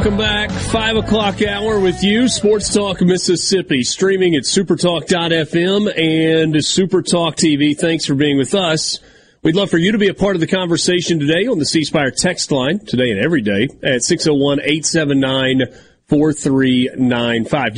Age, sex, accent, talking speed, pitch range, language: 30-49, male, American, 150 wpm, 140-175 Hz, English